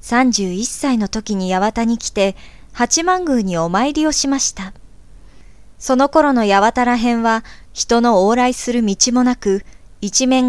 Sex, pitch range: male, 210-270 Hz